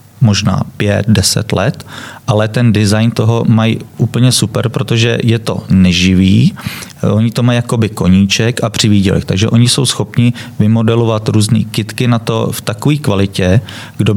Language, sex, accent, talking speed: Czech, male, native, 145 wpm